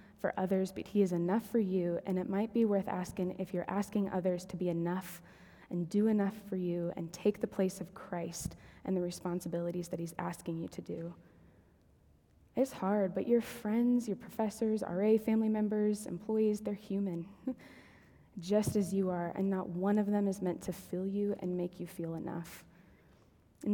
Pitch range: 175-205 Hz